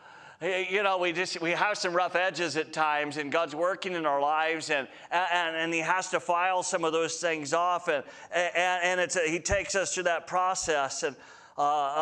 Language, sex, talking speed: English, male, 210 wpm